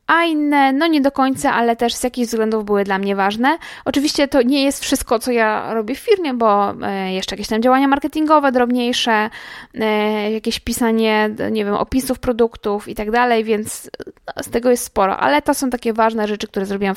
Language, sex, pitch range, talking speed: Polish, female, 220-275 Hz, 190 wpm